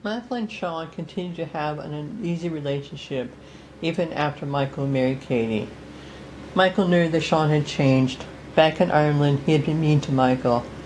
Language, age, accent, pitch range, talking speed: English, 60-79, American, 130-160 Hz, 160 wpm